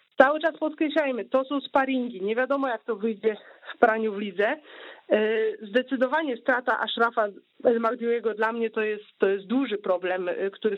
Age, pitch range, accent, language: 40-59, 195-235 Hz, native, Polish